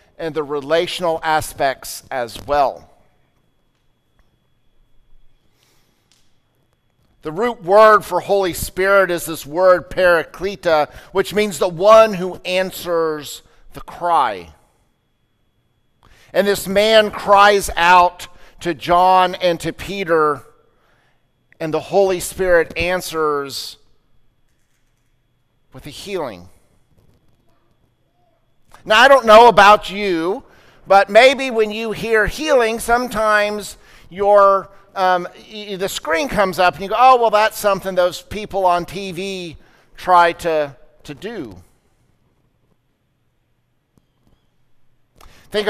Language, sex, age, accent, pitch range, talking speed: English, male, 50-69, American, 155-195 Hz, 100 wpm